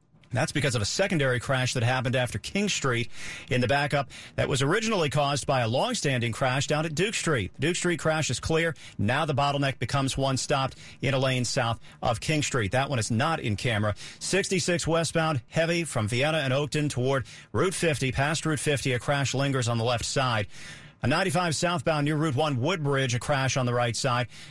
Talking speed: 205 wpm